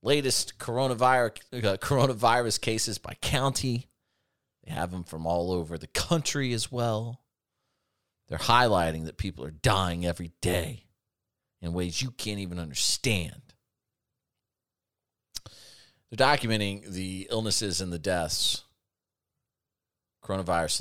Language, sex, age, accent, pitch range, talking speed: English, male, 30-49, American, 90-115 Hz, 110 wpm